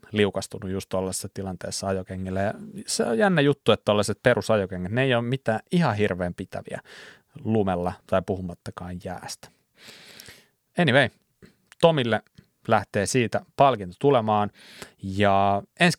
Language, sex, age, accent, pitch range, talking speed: Finnish, male, 30-49, native, 95-125 Hz, 115 wpm